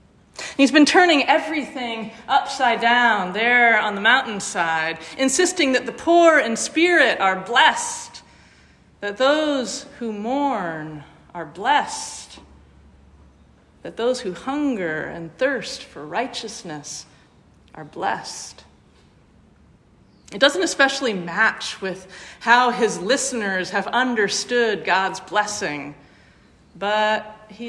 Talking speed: 105 wpm